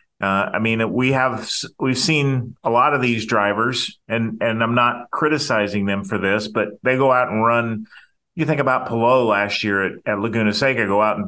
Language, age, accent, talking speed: English, 40-59, American, 205 wpm